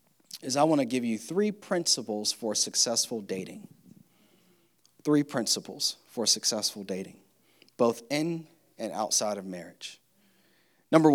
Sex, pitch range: male, 105-135 Hz